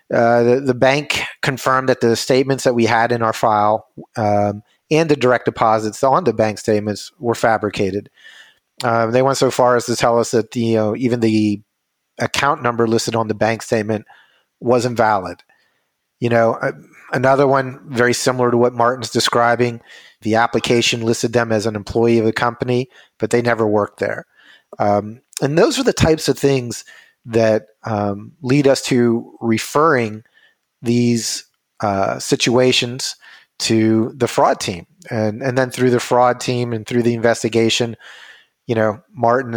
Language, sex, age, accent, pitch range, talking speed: English, male, 30-49, American, 110-125 Hz, 165 wpm